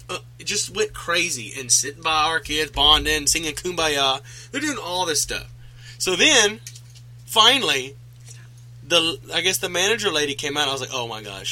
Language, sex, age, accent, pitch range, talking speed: English, male, 20-39, American, 120-155 Hz, 180 wpm